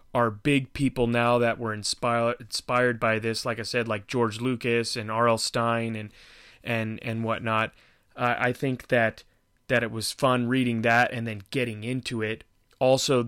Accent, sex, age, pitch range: American, male, 30-49, 115-125 Hz